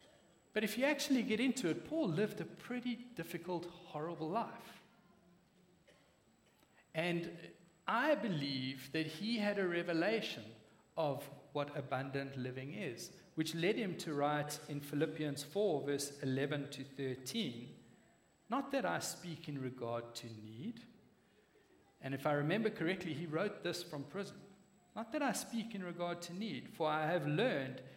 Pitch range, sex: 140-205 Hz, male